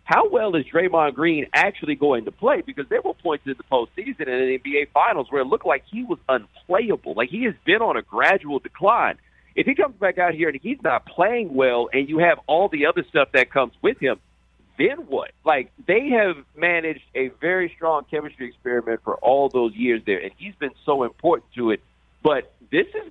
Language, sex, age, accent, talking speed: English, male, 50-69, American, 215 wpm